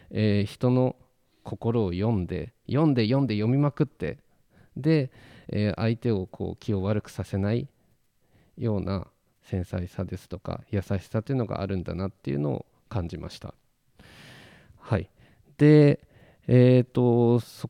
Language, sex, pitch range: Japanese, male, 95-125 Hz